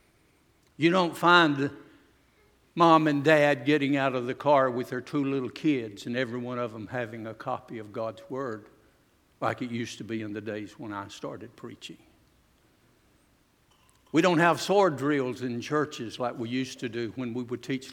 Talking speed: 185 wpm